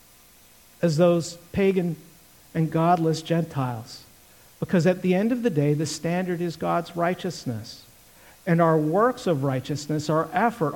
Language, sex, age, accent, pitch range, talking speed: English, male, 50-69, American, 130-185 Hz, 140 wpm